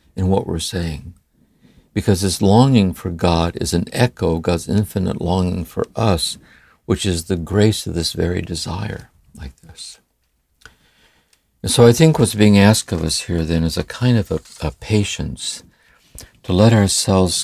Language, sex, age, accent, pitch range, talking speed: English, male, 60-79, American, 85-100 Hz, 170 wpm